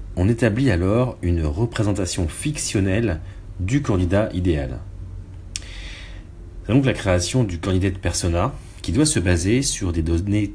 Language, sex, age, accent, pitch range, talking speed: English, male, 30-49, French, 90-105 Hz, 135 wpm